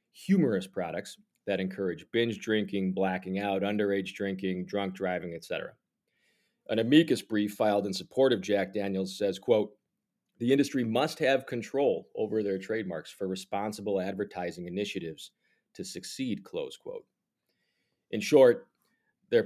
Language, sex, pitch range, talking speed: English, male, 95-110 Hz, 135 wpm